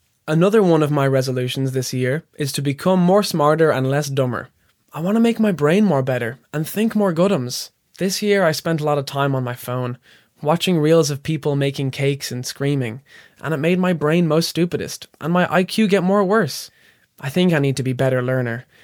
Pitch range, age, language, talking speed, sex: 130-170 Hz, 20-39, English, 215 wpm, male